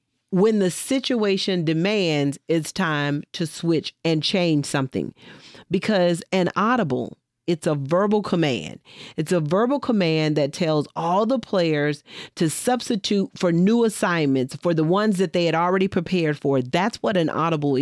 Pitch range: 160-210 Hz